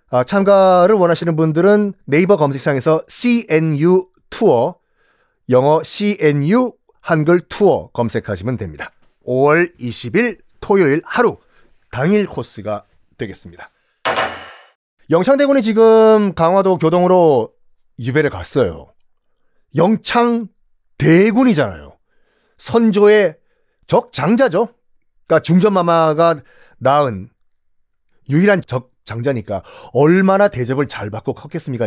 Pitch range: 130-200 Hz